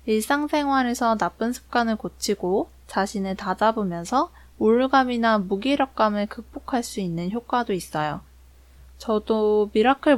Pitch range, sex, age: 195-245 Hz, female, 20-39